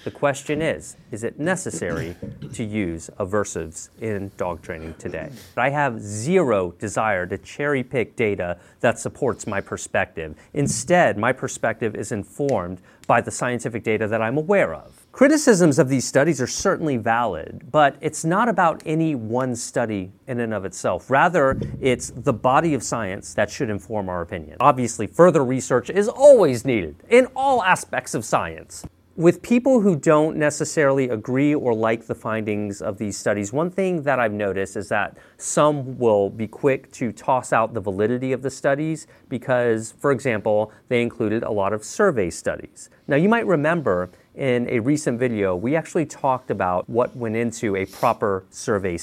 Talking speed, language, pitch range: 170 wpm, English, 105-145 Hz